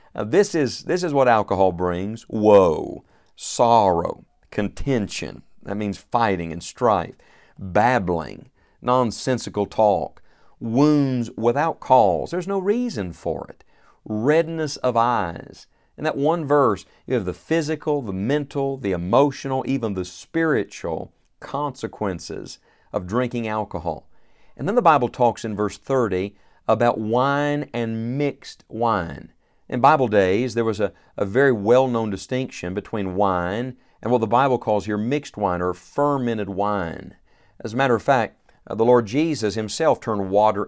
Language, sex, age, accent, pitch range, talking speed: English, male, 50-69, American, 100-130 Hz, 140 wpm